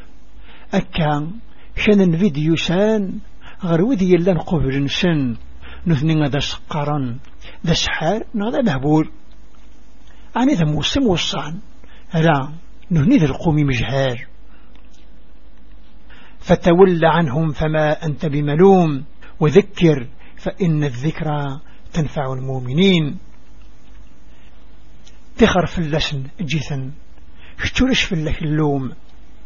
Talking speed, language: 80 wpm, Arabic